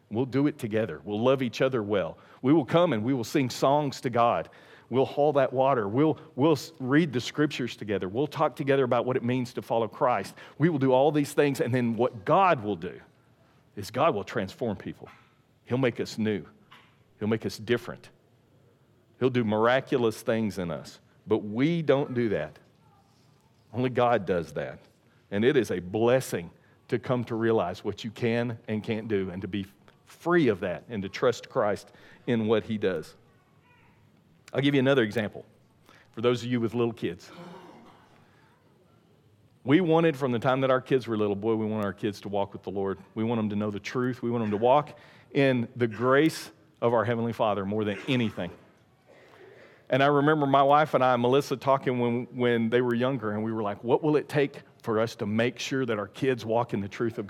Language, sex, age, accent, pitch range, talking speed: English, male, 50-69, American, 110-135 Hz, 205 wpm